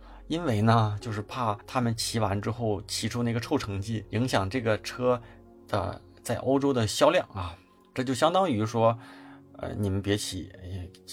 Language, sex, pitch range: Chinese, male, 105-135 Hz